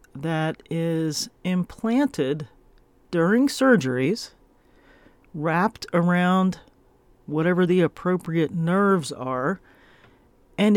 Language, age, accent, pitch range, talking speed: English, 40-59, American, 145-185 Hz, 70 wpm